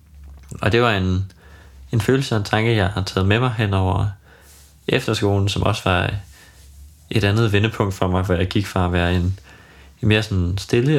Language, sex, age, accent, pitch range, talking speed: Danish, male, 20-39, native, 95-110 Hz, 195 wpm